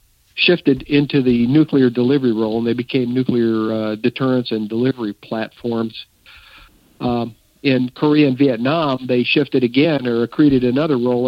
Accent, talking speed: American, 145 wpm